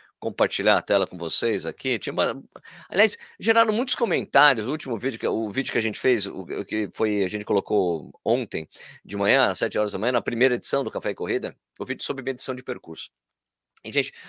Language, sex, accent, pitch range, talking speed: Portuguese, male, Brazilian, 130-180 Hz, 215 wpm